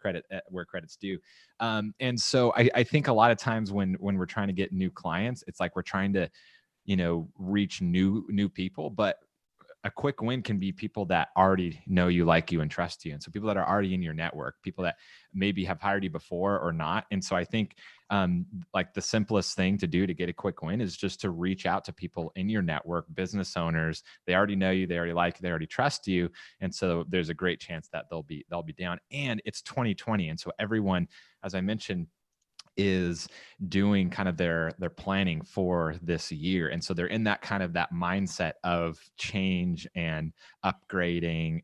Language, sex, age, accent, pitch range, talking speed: English, male, 30-49, American, 85-105 Hz, 220 wpm